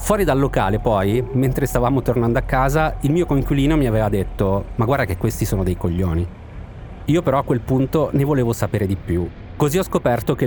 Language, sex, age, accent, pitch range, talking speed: Italian, male, 40-59, native, 115-150 Hz, 205 wpm